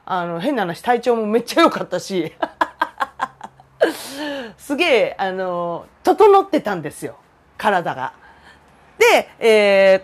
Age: 40-59